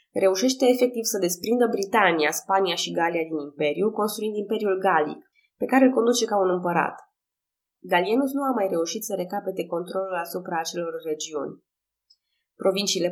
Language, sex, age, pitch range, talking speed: Romanian, female, 20-39, 165-225 Hz, 145 wpm